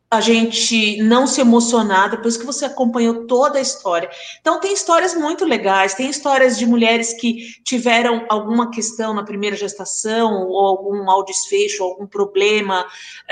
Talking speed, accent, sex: 155 wpm, Brazilian, female